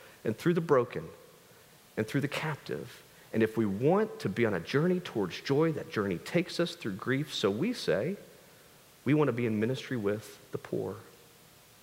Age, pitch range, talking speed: 40-59, 125-165 Hz, 190 wpm